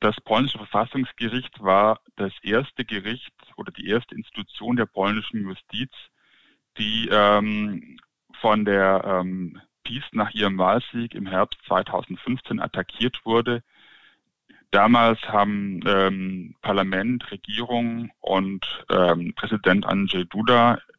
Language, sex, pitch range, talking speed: German, male, 100-115 Hz, 110 wpm